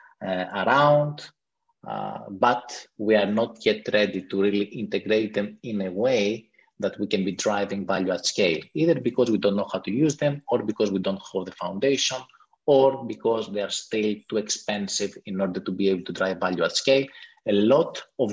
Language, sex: English, male